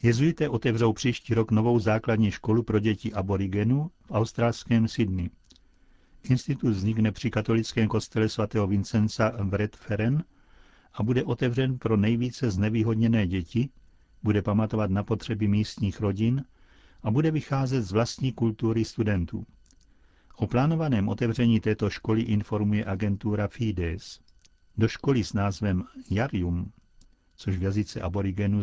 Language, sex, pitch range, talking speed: Czech, male, 95-120 Hz, 120 wpm